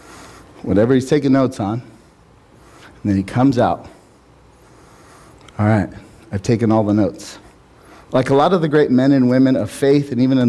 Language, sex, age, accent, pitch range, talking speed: English, male, 40-59, American, 110-145 Hz, 175 wpm